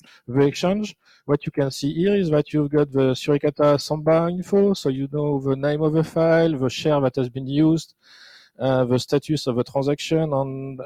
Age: 40-59